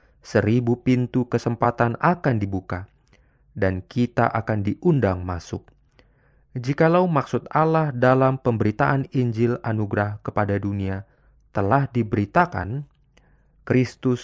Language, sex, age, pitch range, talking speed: Indonesian, male, 30-49, 105-140 Hz, 95 wpm